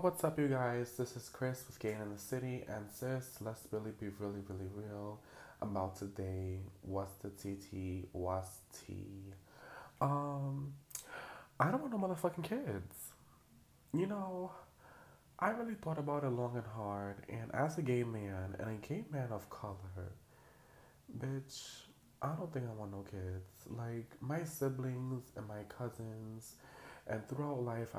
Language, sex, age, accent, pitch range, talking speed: English, male, 20-39, American, 95-125 Hz, 155 wpm